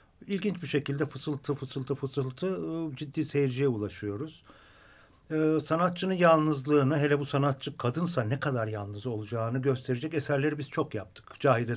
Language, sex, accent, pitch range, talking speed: Turkish, male, native, 115-145 Hz, 135 wpm